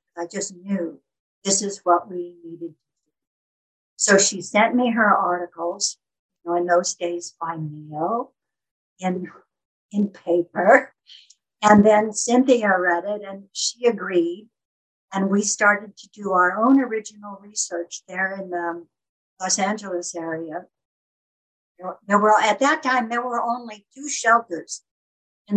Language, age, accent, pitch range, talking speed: English, 60-79, American, 175-220 Hz, 140 wpm